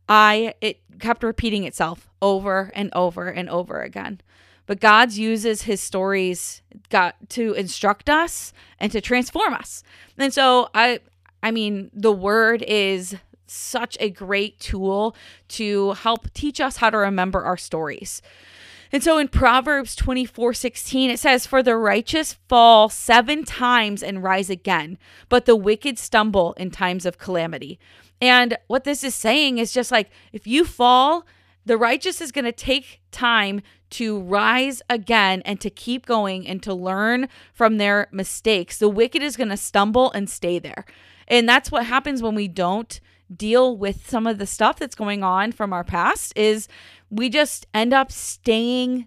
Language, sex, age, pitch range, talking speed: English, female, 20-39, 200-255 Hz, 165 wpm